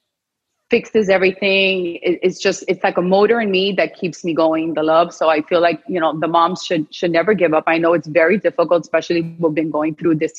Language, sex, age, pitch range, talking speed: English, female, 30-49, 165-195 Hz, 245 wpm